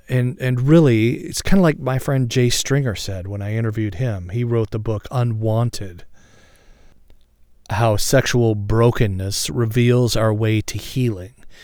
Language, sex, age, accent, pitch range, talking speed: English, male, 40-59, American, 105-135 Hz, 150 wpm